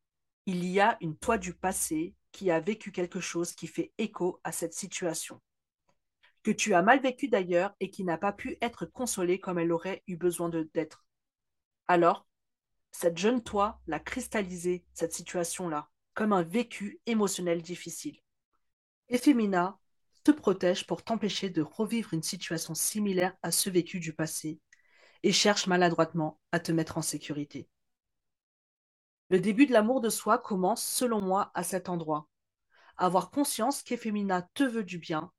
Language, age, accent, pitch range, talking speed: French, 40-59, French, 170-210 Hz, 160 wpm